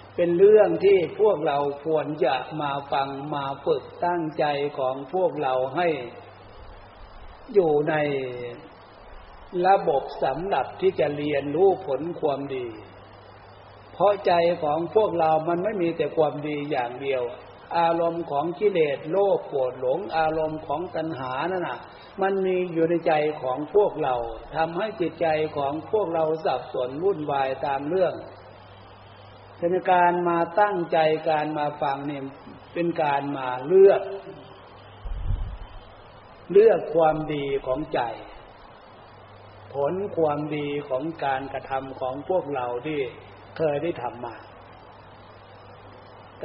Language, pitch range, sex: Thai, 120-170 Hz, male